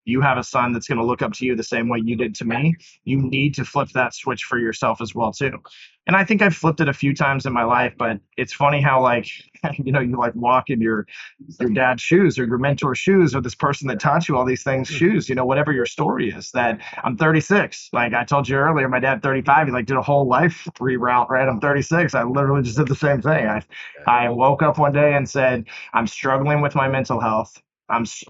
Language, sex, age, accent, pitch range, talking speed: English, male, 30-49, American, 125-155 Hz, 250 wpm